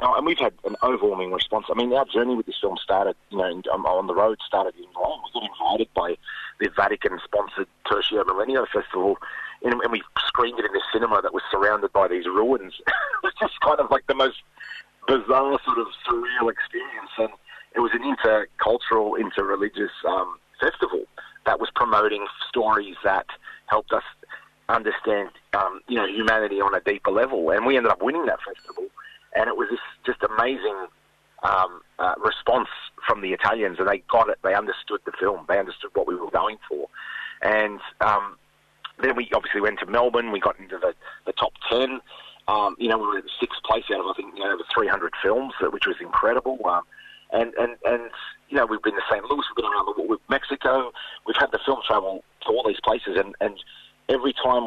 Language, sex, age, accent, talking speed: English, male, 40-59, Australian, 200 wpm